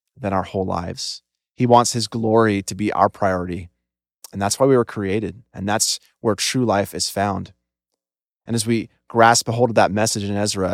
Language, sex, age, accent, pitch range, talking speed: English, male, 30-49, American, 95-115 Hz, 200 wpm